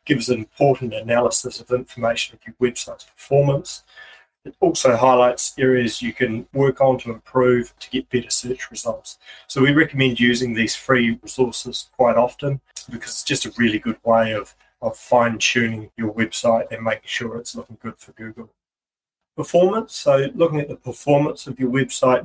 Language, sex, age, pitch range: English, male, 30-49, 115-125 Hz